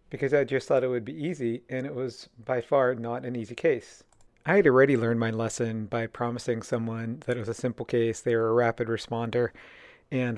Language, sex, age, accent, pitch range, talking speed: English, male, 40-59, American, 115-130 Hz, 220 wpm